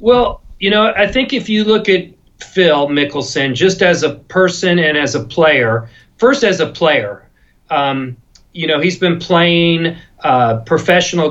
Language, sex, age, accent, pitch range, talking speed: English, male, 40-59, American, 160-190 Hz, 165 wpm